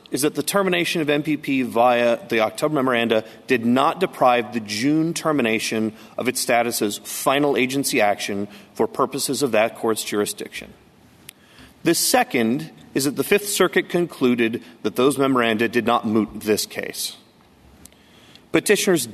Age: 40-59